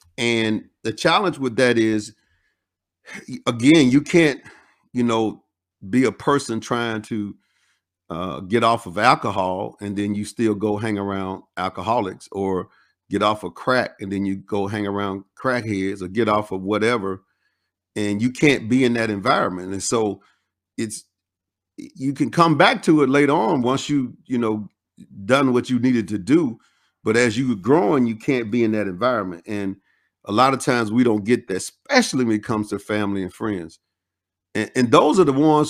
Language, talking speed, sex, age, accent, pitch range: English, 180 wpm, male, 50-69, American, 100-130 Hz